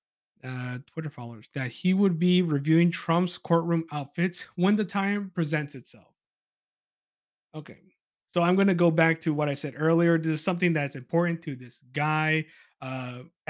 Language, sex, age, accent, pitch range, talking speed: English, male, 30-49, American, 145-185 Hz, 165 wpm